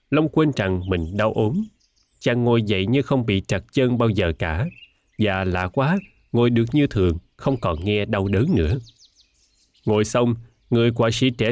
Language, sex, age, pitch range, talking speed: Vietnamese, male, 20-39, 95-130 Hz, 190 wpm